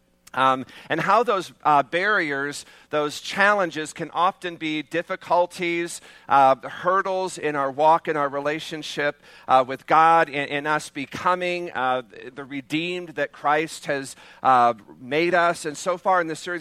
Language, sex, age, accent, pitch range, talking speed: English, male, 50-69, American, 150-190 Hz, 150 wpm